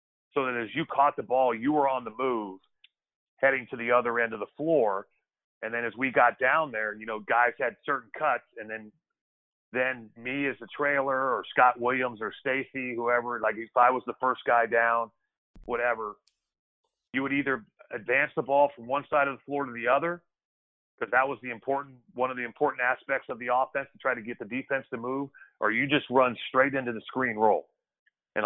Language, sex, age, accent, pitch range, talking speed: English, male, 40-59, American, 110-130 Hz, 215 wpm